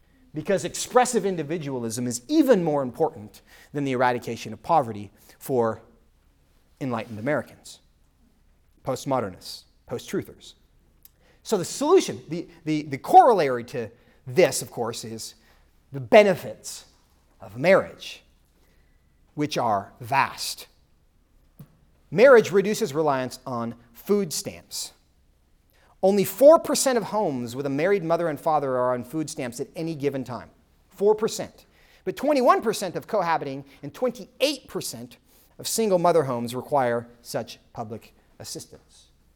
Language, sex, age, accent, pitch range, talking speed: English, male, 40-59, American, 115-180 Hz, 115 wpm